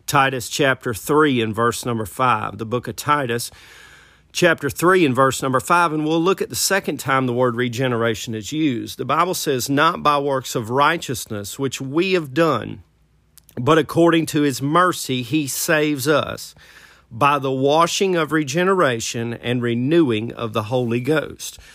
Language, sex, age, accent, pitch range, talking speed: English, male, 40-59, American, 120-150 Hz, 165 wpm